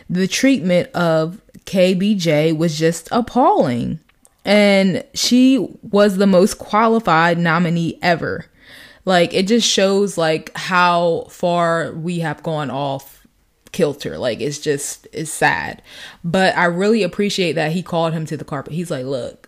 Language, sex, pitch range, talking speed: English, female, 160-195 Hz, 140 wpm